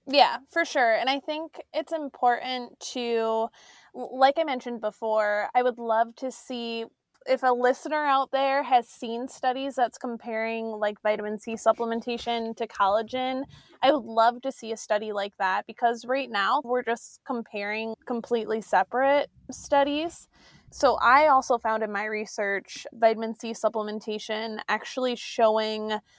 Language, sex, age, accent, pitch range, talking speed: English, female, 20-39, American, 220-265 Hz, 145 wpm